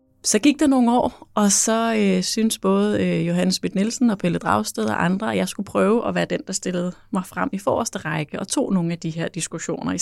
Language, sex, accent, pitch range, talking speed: Danish, female, native, 180-220 Hz, 245 wpm